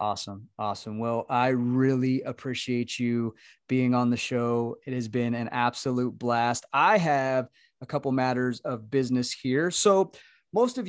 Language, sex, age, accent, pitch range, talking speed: English, male, 20-39, American, 120-145 Hz, 155 wpm